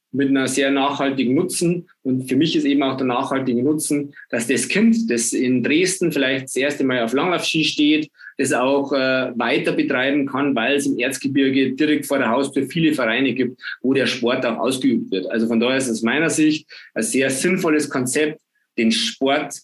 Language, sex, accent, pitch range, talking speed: German, male, German, 125-145 Hz, 195 wpm